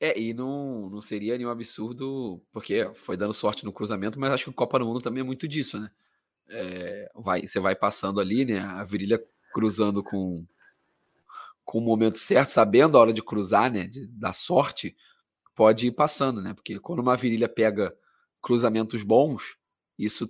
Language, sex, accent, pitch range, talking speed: Portuguese, male, Brazilian, 110-130 Hz, 180 wpm